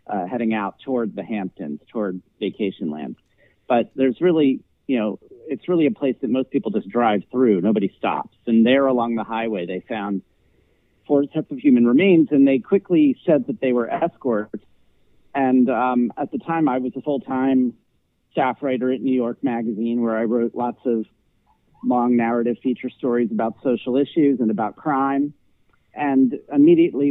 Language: English